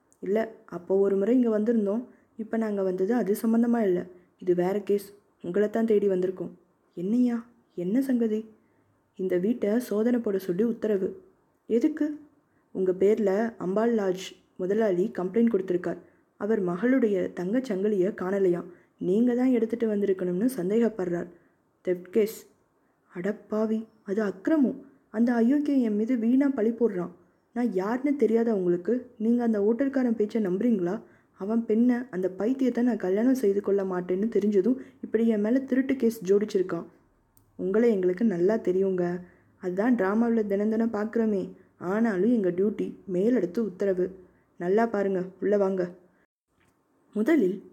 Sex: female